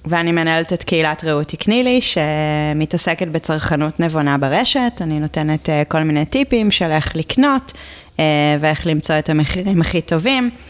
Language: Hebrew